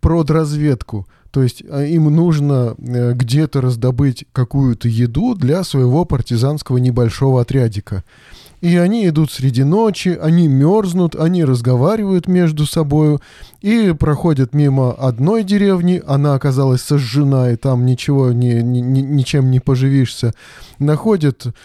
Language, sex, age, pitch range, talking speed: Russian, male, 20-39, 125-155 Hz, 115 wpm